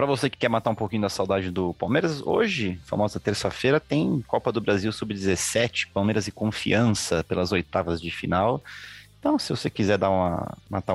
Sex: male